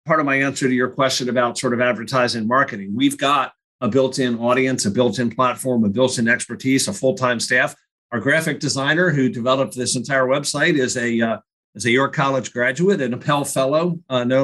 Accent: American